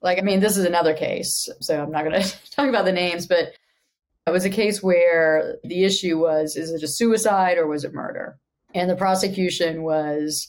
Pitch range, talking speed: 155-200 Hz, 205 wpm